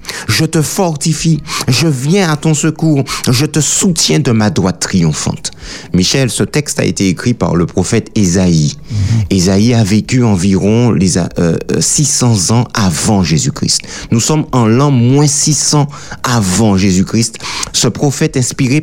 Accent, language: French, French